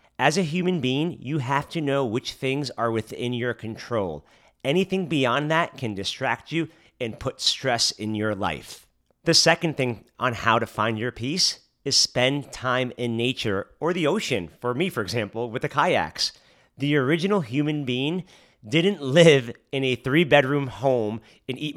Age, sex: 30-49, male